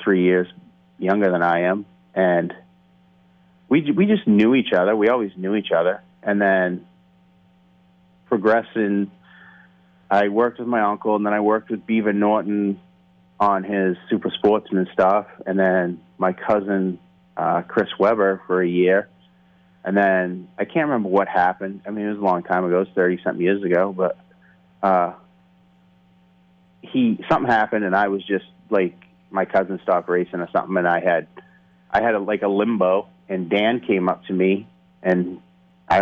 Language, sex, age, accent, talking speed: English, male, 30-49, American, 170 wpm